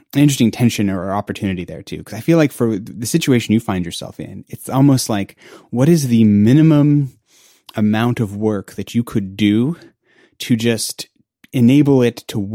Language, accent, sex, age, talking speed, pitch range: English, American, male, 30-49, 175 wpm, 100-125 Hz